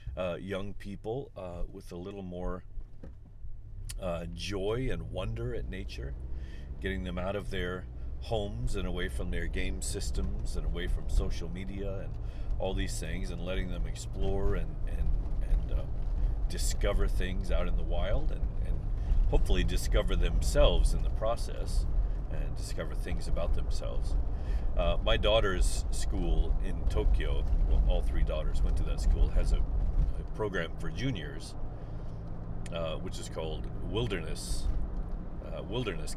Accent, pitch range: American, 80-95 Hz